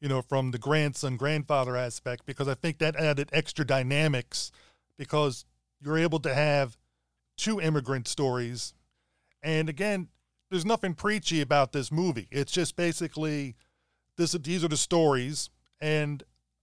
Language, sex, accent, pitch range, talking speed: English, male, American, 130-160 Hz, 135 wpm